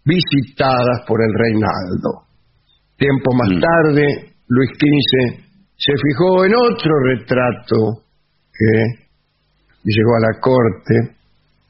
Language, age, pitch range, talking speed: English, 50-69, 115-145 Hz, 95 wpm